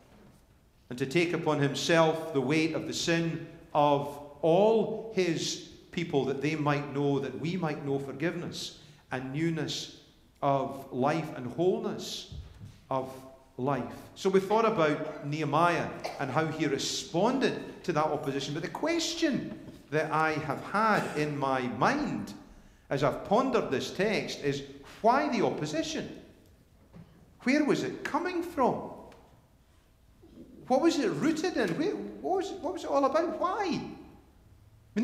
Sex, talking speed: male, 140 wpm